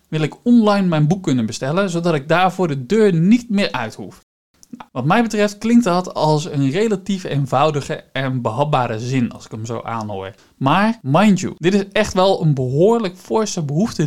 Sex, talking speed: male, 190 wpm